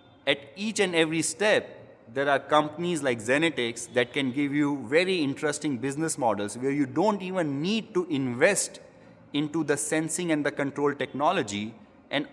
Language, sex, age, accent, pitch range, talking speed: English, male, 30-49, Indian, 120-155 Hz, 160 wpm